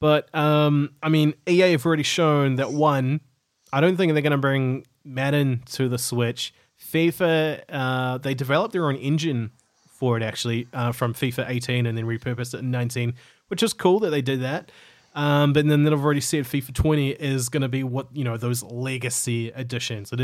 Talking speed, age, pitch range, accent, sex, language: 200 wpm, 20-39, 120-150 Hz, Australian, male, English